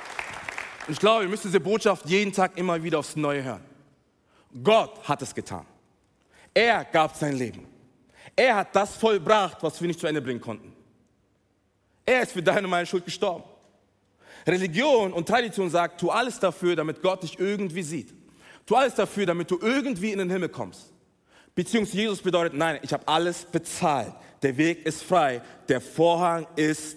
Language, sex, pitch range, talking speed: German, male, 145-195 Hz, 170 wpm